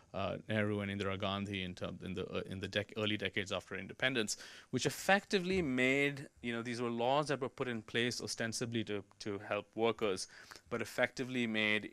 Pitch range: 100-125 Hz